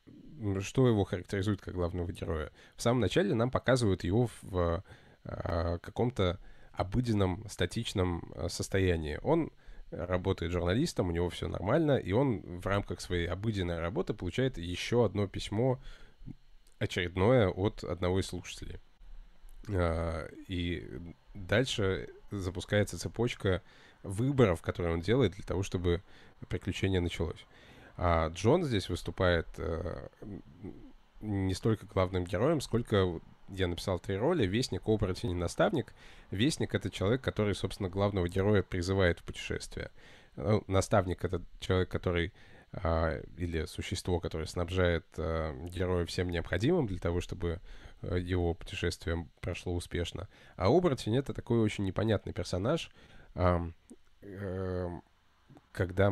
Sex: male